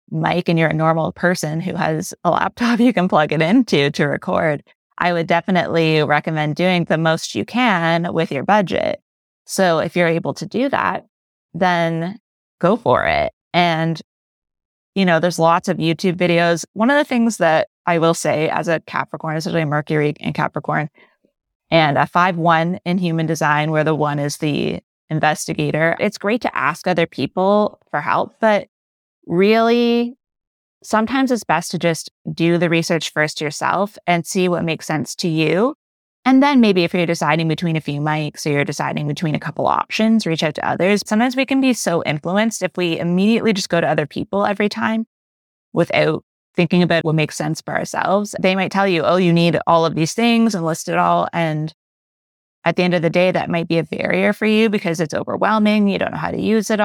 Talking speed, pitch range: 200 wpm, 160-205 Hz